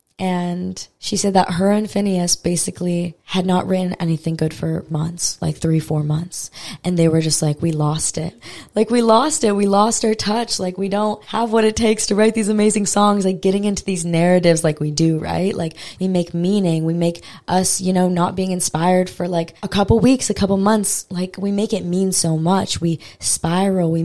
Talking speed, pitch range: 215 wpm, 165-195 Hz